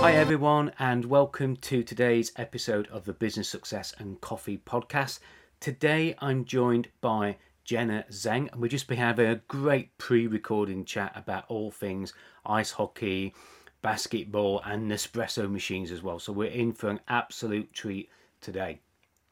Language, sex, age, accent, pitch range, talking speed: English, male, 30-49, British, 105-140 Hz, 150 wpm